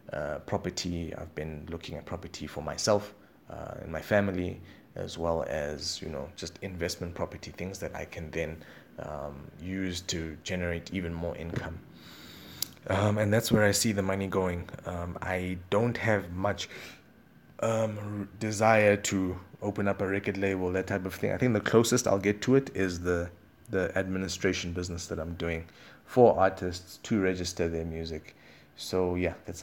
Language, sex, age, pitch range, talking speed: English, male, 20-39, 85-100 Hz, 170 wpm